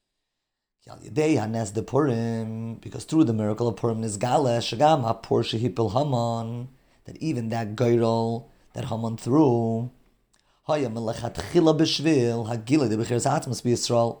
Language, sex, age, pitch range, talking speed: English, male, 30-49, 115-140 Hz, 65 wpm